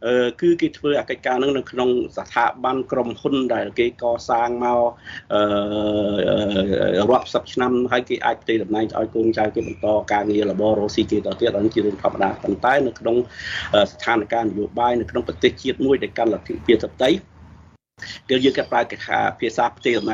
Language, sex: English, male